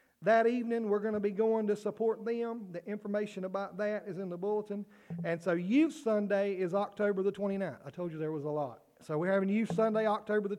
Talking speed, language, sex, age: 225 wpm, English, male, 40-59